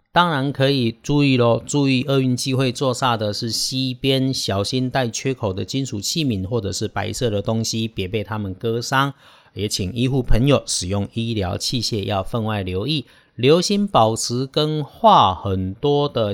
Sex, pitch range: male, 100-130 Hz